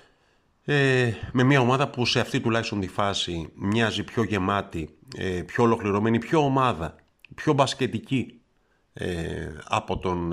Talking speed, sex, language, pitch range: 115 wpm, male, Greek, 95-135 Hz